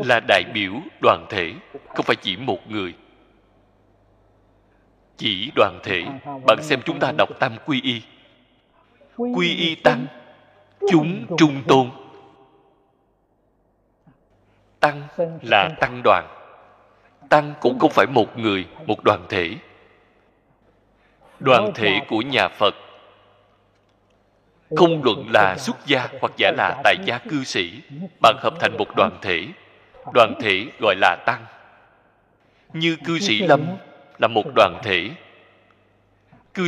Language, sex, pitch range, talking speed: Vietnamese, male, 100-160 Hz, 125 wpm